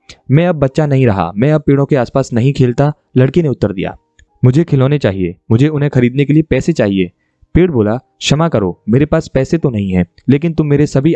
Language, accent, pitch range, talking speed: Hindi, native, 110-145 Hz, 215 wpm